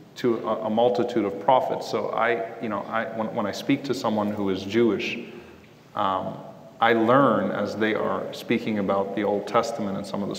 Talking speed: 195 wpm